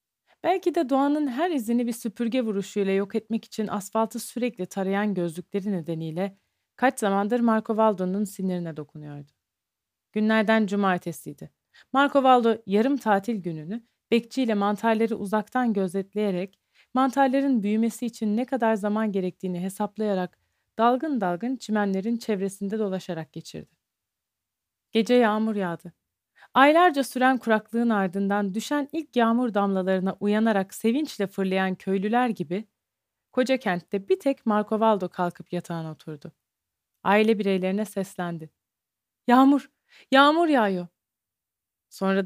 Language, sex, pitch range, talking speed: Turkish, female, 185-235 Hz, 110 wpm